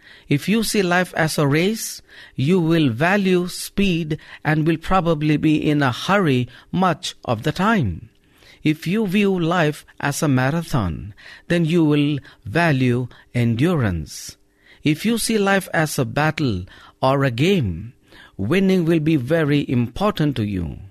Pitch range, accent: 135-175 Hz, Indian